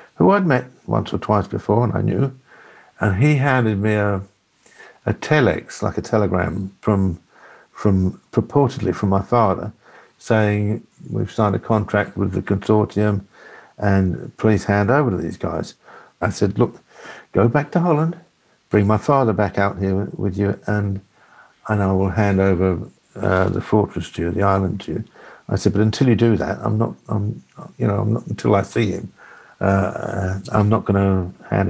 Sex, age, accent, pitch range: male, 60-79, British, 95-115 Hz